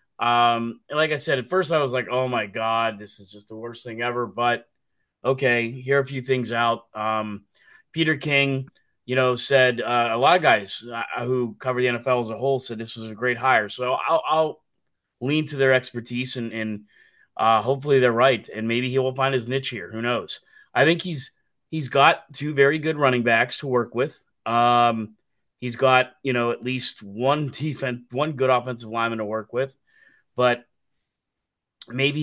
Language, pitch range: English, 115-135 Hz